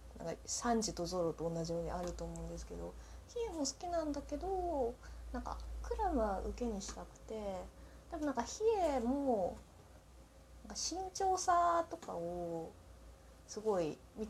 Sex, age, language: female, 20-39, Japanese